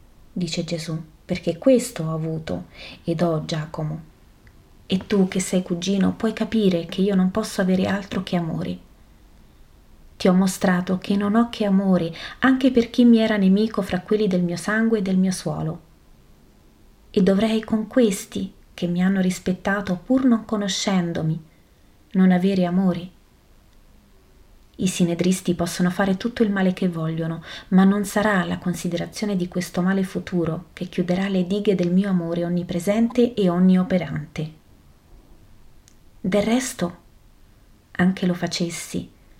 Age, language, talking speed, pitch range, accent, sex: 30-49, Italian, 145 wpm, 165-205 Hz, native, female